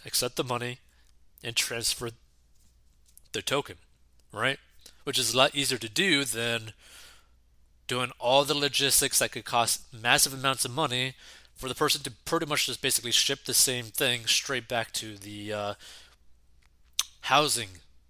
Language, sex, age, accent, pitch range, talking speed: English, male, 20-39, American, 80-130 Hz, 150 wpm